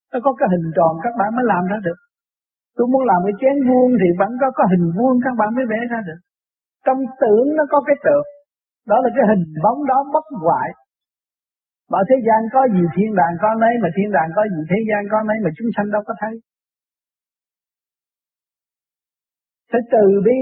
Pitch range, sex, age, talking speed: 190-260 Hz, male, 60-79, 205 wpm